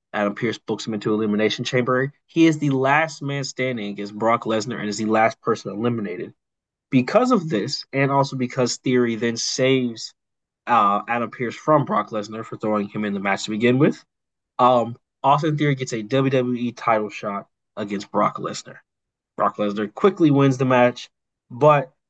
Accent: American